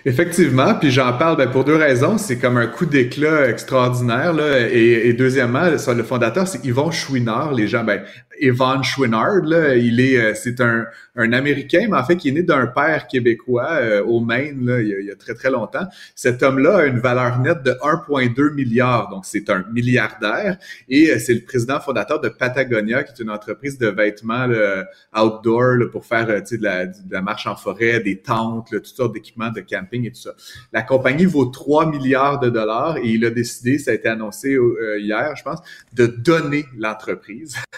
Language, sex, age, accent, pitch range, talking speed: French, male, 30-49, Canadian, 115-135 Hz, 205 wpm